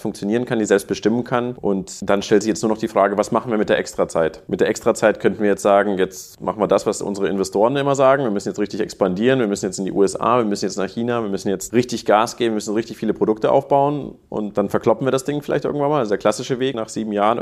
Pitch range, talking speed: 105-125 Hz, 285 wpm